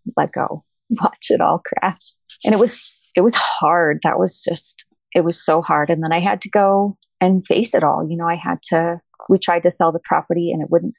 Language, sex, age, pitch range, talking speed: English, female, 30-49, 160-195 Hz, 235 wpm